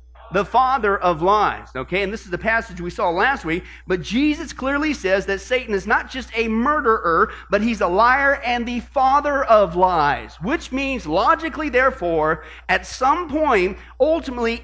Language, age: English, 40-59